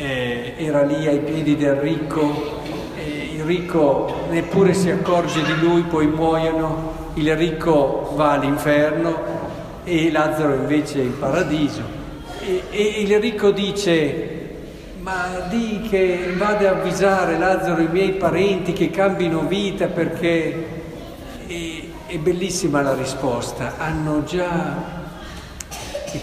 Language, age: Italian, 50-69